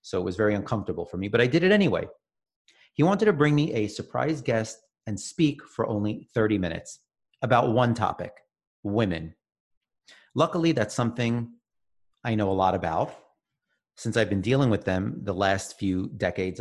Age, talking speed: 40-59, 175 wpm